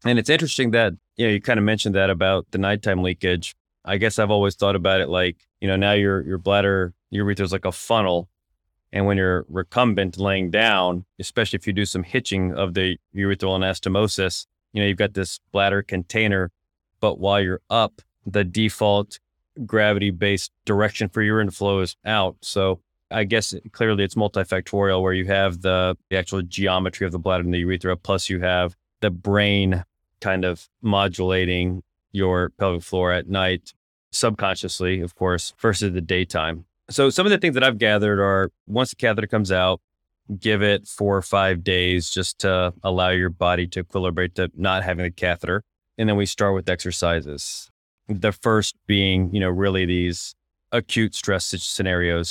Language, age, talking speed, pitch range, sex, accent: English, 20-39, 180 wpm, 90-100 Hz, male, American